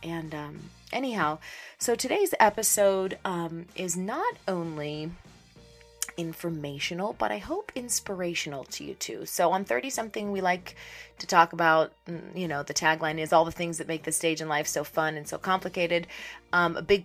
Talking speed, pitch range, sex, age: 175 wpm, 155-195 Hz, female, 30-49